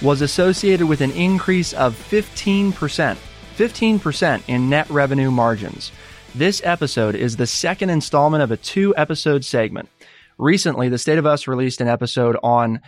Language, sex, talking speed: English, male, 145 wpm